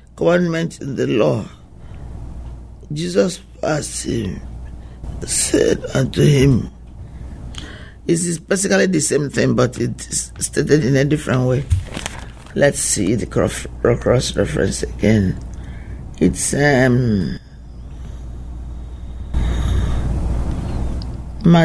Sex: male